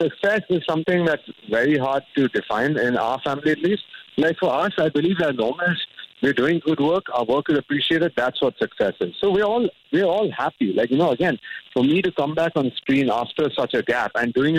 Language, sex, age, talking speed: English, male, 50-69, 225 wpm